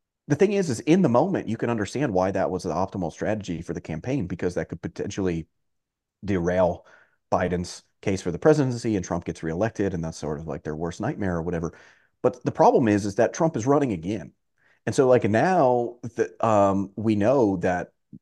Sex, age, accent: male, 30-49, American